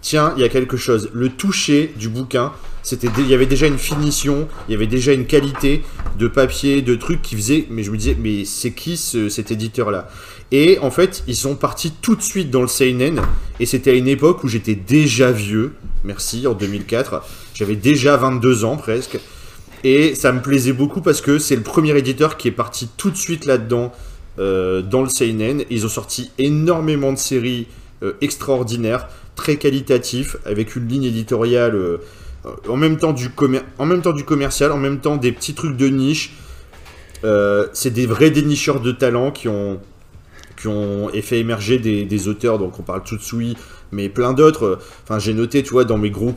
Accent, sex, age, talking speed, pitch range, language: French, male, 30-49, 205 wpm, 105-140 Hz, French